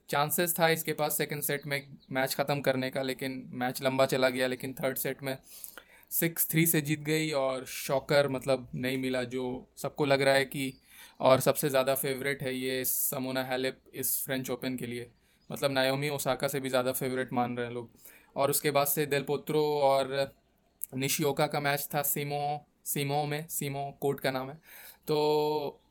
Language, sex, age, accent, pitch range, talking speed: Hindi, male, 20-39, native, 130-150 Hz, 185 wpm